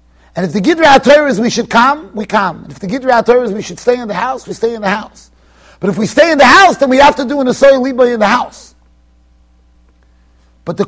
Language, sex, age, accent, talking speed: English, male, 30-49, American, 250 wpm